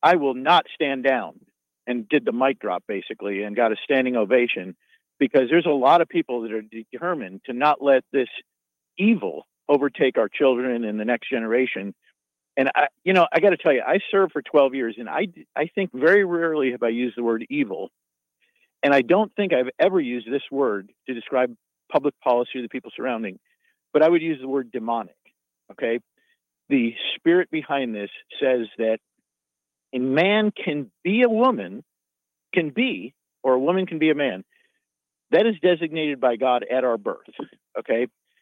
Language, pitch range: English, 125-190 Hz